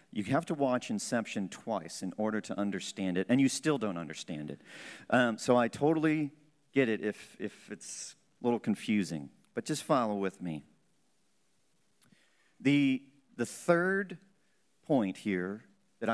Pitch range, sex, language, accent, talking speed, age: 110-155 Hz, male, English, American, 150 wpm, 40-59